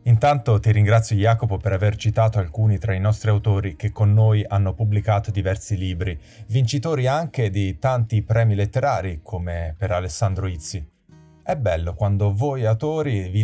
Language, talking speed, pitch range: Italian, 155 wpm, 100-120 Hz